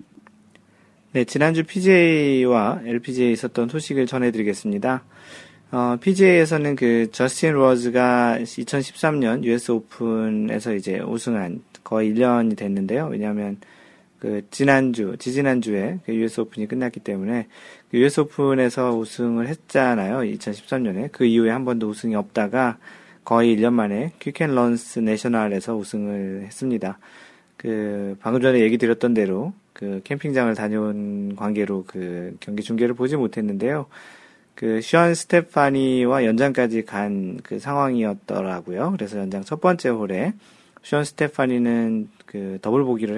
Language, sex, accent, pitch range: Korean, male, native, 110-140 Hz